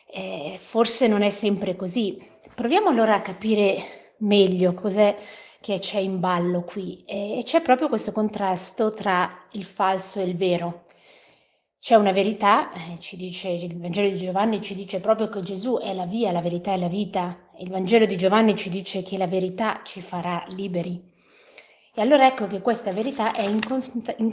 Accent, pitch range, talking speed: native, 185-220 Hz, 175 wpm